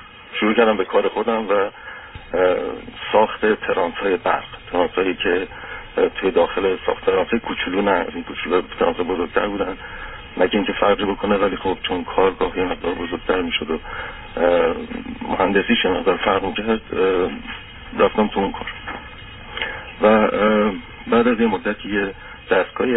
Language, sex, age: Persian, male, 50-69